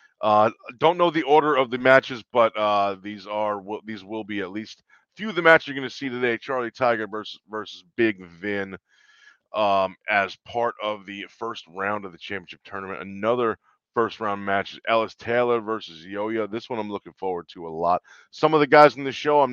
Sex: male